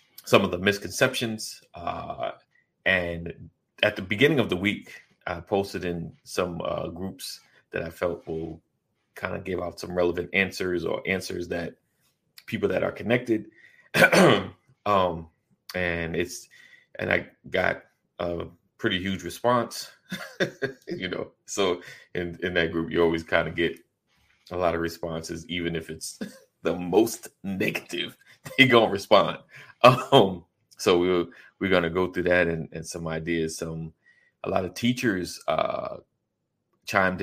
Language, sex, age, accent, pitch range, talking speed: English, male, 30-49, American, 85-95 Hz, 155 wpm